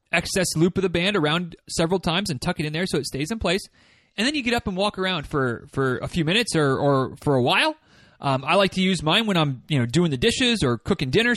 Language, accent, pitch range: English, American, 155-205 Hz